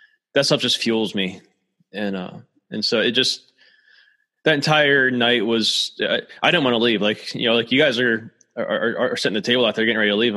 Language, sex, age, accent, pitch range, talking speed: English, male, 20-39, American, 105-125 Hz, 230 wpm